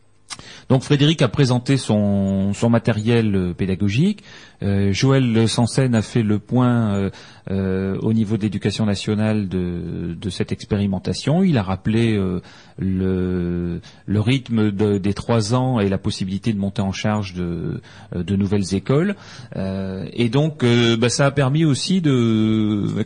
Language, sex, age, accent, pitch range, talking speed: French, male, 30-49, French, 100-130 Hz, 150 wpm